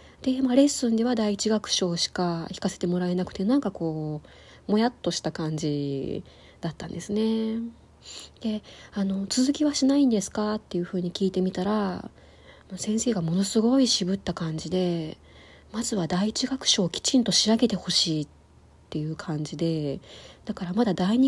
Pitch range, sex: 170-225 Hz, female